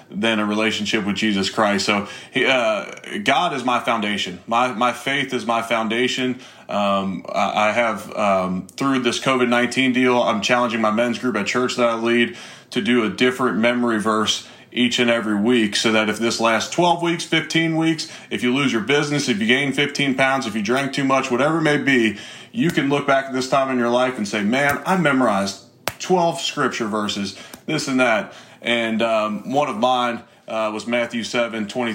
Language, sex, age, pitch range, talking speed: English, male, 30-49, 110-125 Hz, 195 wpm